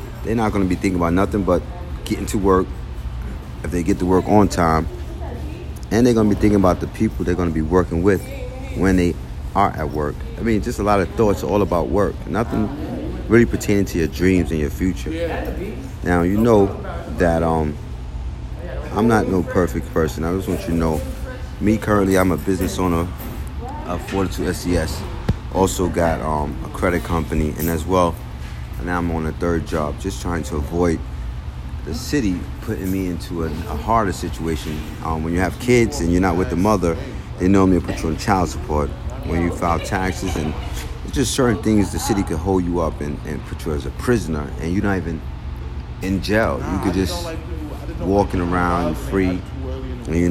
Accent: American